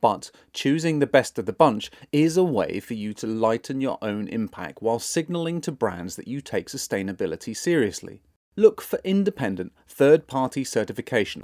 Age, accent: 40-59, British